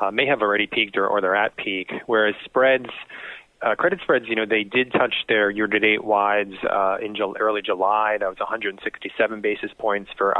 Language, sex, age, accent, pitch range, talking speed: English, male, 20-39, American, 100-120 Hz, 195 wpm